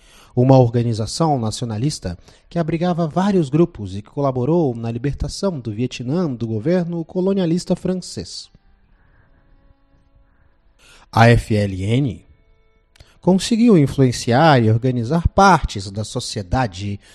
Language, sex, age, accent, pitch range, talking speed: Portuguese, male, 40-59, Brazilian, 100-160 Hz, 95 wpm